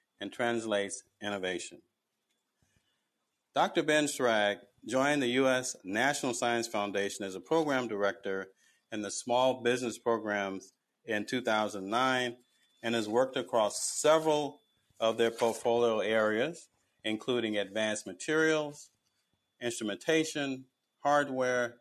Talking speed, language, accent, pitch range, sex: 100 wpm, English, American, 105-130 Hz, male